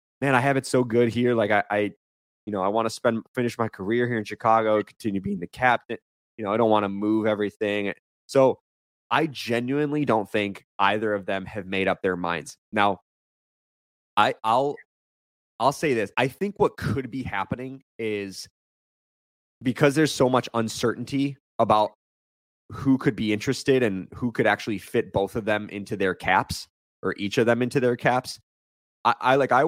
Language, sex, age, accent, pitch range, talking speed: English, male, 20-39, American, 100-125 Hz, 185 wpm